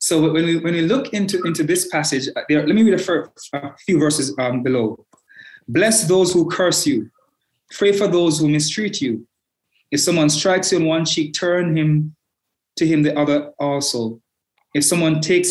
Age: 20-39